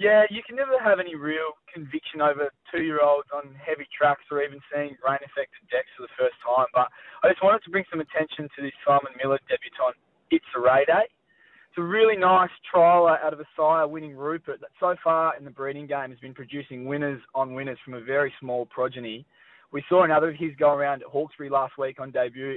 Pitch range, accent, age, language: 135-170 Hz, Australian, 20-39, English